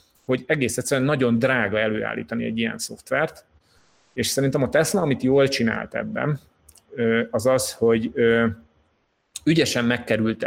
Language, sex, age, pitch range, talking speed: Hungarian, male, 30-49, 110-130 Hz, 125 wpm